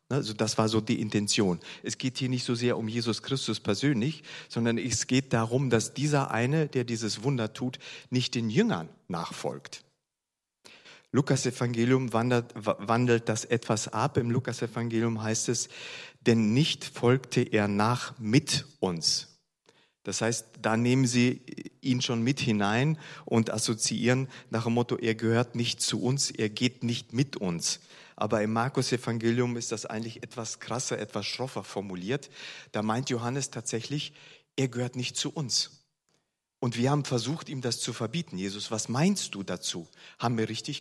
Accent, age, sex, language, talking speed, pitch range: German, 40-59, male, German, 160 wpm, 110-130 Hz